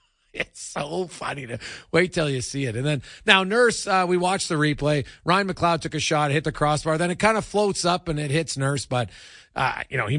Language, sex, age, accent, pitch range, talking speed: English, male, 40-59, American, 90-145 Hz, 240 wpm